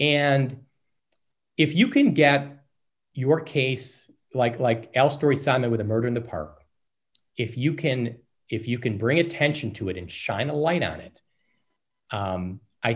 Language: English